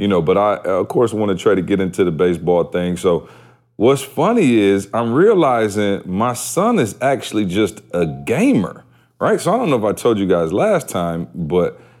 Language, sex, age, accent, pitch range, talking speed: English, male, 30-49, American, 95-125 Hz, 205 wpm